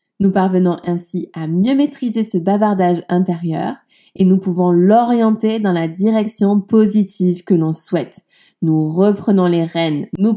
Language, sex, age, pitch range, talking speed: French, female, 20-39, 175-220 Hz, 145 wpm